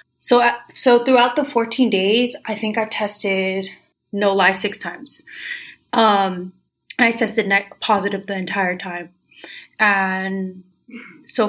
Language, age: English, 20-39